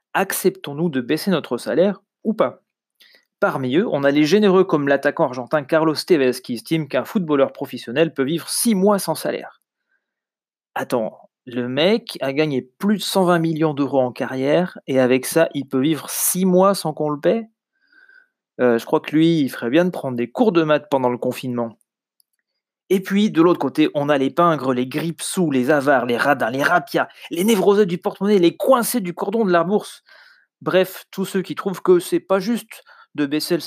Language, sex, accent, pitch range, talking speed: French, male, French, 135-200 Hz, 200 wpm